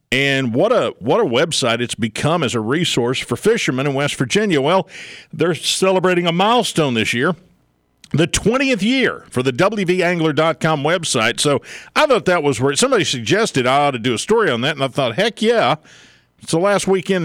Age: 50-69